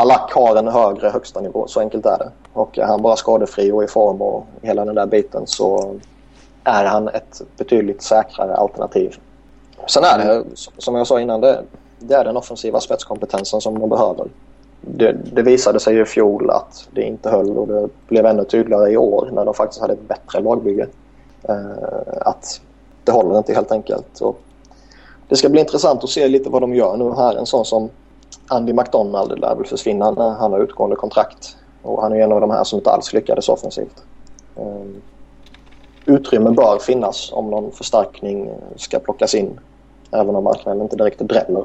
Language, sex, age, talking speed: Swedish, male, 20-39, 185 wpm